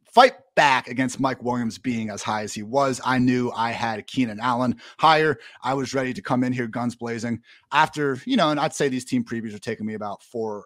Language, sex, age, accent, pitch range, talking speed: English, male, 30-49, American, 125-165 Hz, 230 wpm